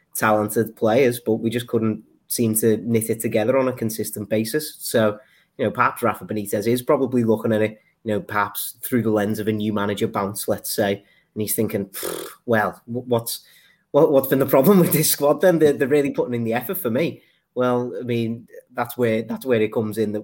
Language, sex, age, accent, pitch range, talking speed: English, male, 30-49, British, 105-115 Hz, 215 wpm